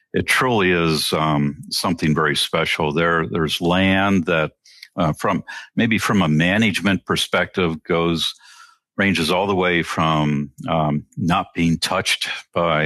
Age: 50-69